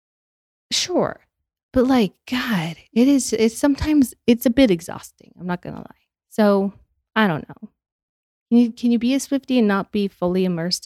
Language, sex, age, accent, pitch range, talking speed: English, female, 20-39, American, 170-220 Hz, 175 wpm